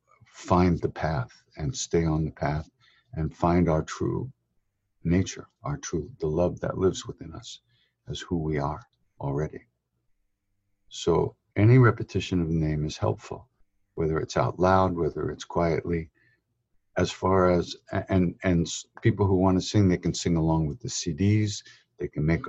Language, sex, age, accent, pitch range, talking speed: English, male, 60-79, American, 85-105 Hz, 165 wpm